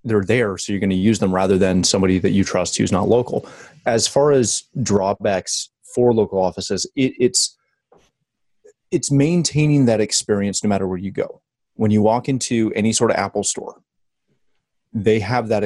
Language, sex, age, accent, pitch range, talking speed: English, male, 30-49, American, 100-120 Hz, 175 wpm